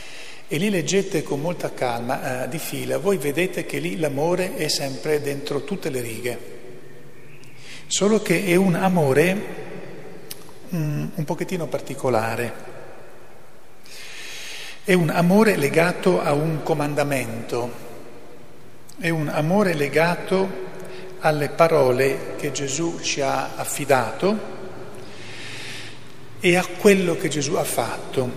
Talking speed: 115 wpm